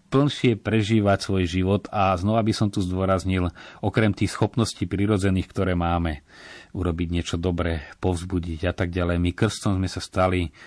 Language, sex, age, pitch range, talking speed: Slovak, male, 30-49, 85-105 Hz, 155 wpm